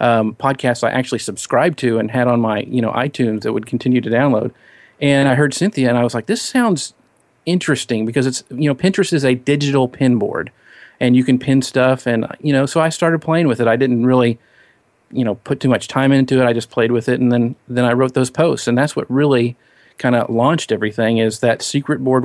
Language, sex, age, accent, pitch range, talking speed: English, male, 40-59, American, 125-140 Hz, 235 wpm